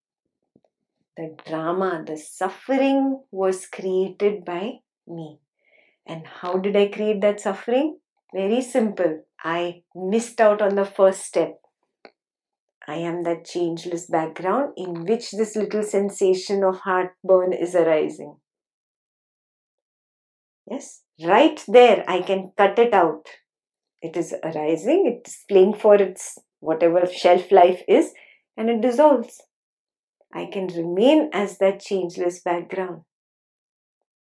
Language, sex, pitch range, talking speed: English, female, 180-250 Hz, 115 wpm